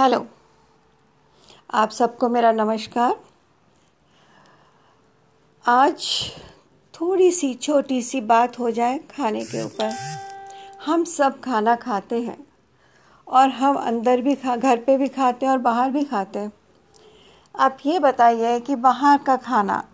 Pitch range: 240-280 Hz